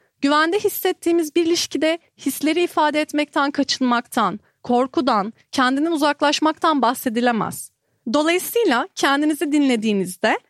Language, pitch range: Turkish, 250-320 Hz